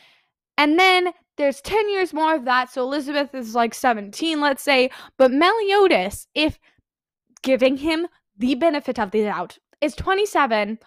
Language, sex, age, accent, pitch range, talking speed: English, female, 10-29, American, 215-295 Hz, 150 wpm